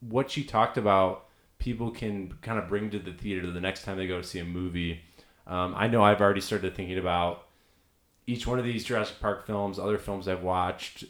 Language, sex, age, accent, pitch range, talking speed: English, male, 20-39, American, 90-105 Hz, 215 wpm